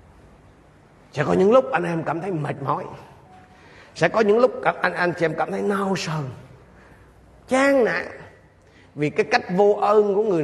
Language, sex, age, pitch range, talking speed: Vietnamese, male, 30-49, 125-165 Hz, 170 wpm